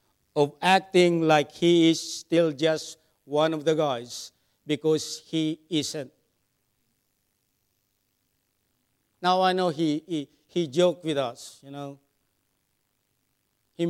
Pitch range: 125-160 Hz